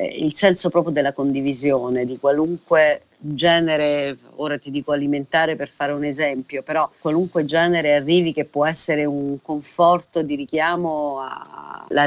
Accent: native